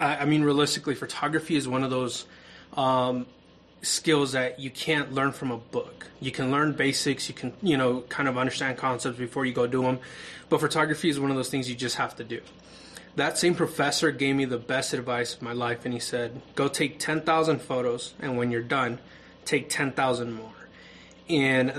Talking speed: 200 wpm